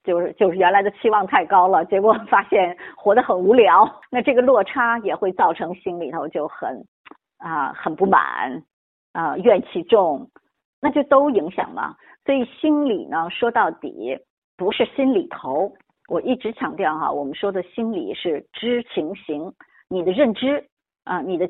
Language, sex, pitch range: Chinese, female, 180-270 Hz